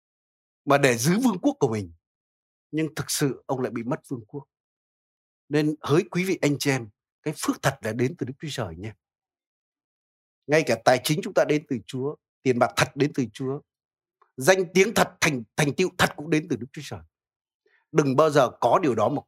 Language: Vietnamese